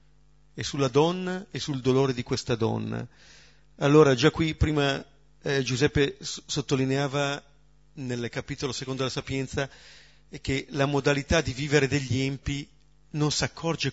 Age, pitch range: 40-59, 125-150 Hz